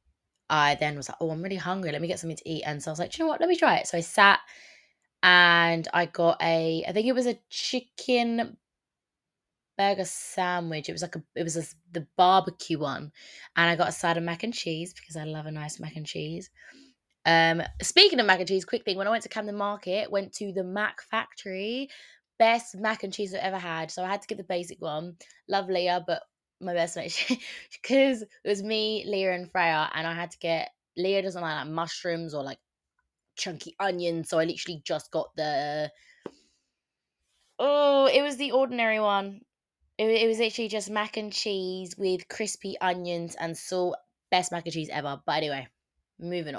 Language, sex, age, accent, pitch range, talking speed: English, female, 20-39, British, 165-205 Hz, 205 wpm